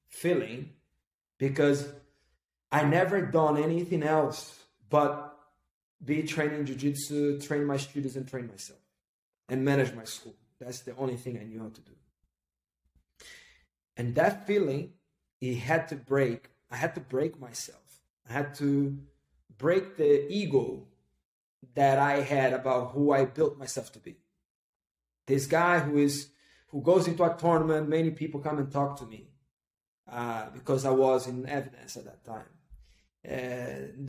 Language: English